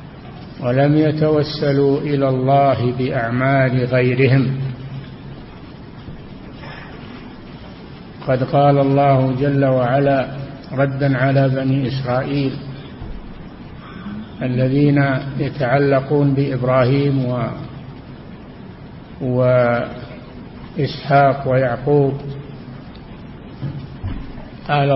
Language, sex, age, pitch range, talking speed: Arabic, male, 50-69, 130-140 Hz, 55 wpm